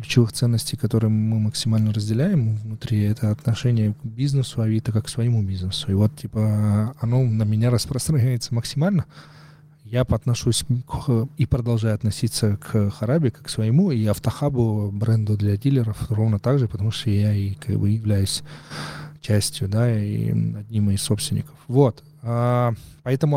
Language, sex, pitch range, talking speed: Russian, male, 110-135 Hz, 140 wpm